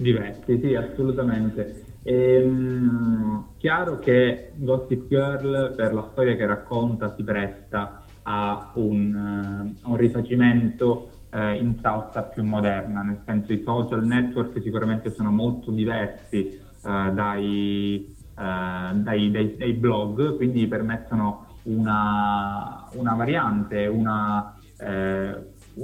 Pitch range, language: 105-120 Hz, Italian